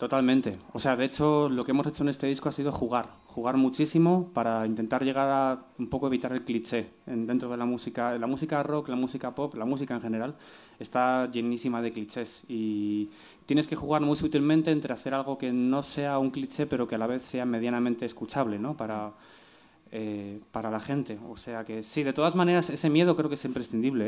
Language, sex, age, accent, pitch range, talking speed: Spanish, male, 20-39, Spanish, 120-145 Hz, 210 wpm